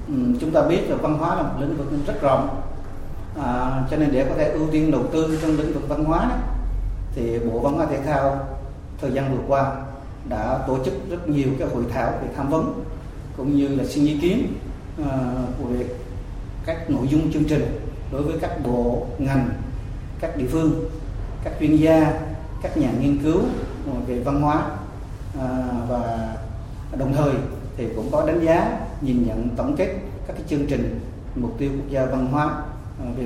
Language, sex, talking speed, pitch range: Vietnamese, male, 185 wpm, 115-145 Hz